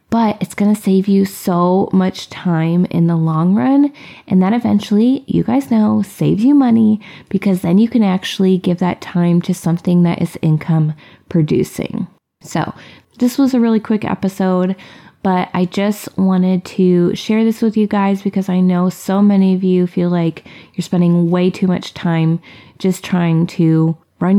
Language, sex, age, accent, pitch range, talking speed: English, female, 20-39, American, 185-240 Hz, 175 wpm